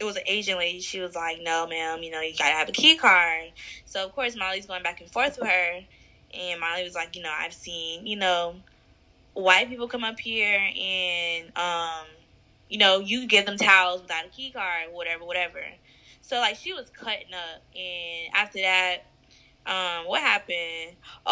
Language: English